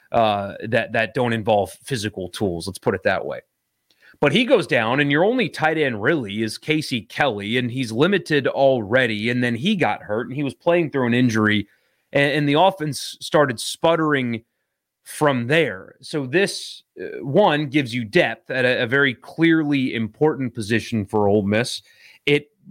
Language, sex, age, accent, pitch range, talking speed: English, male, 30-49, American, 120-150 Hz, 175 wpm